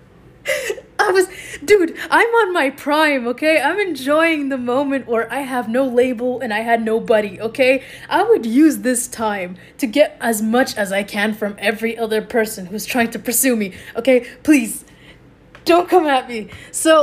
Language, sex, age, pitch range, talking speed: English, female, 20-39, 215-300 Hz, 175 wpm